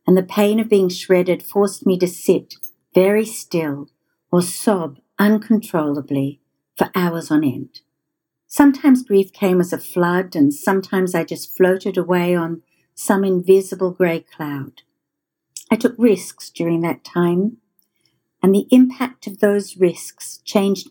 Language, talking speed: English, 140 wpm